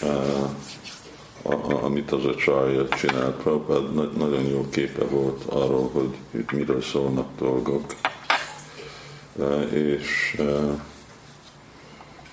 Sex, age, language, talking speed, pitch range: male, 50-69, Hungarian, 95 wpm, 65-75 Hz